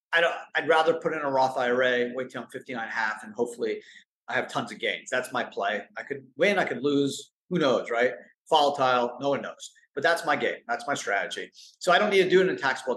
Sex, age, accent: male, 30-49, American